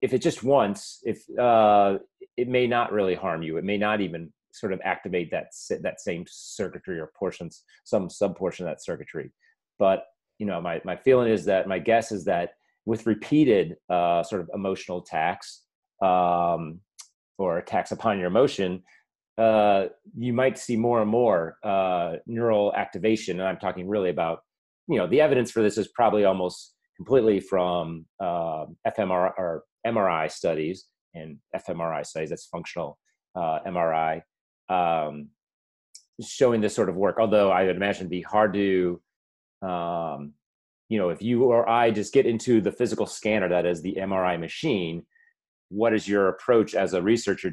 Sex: male